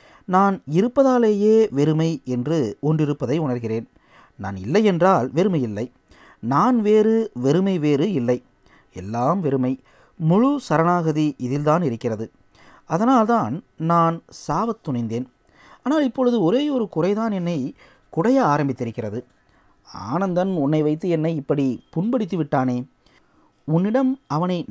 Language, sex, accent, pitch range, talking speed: Tamil, male, native, 130-195 Hz, 100 wpm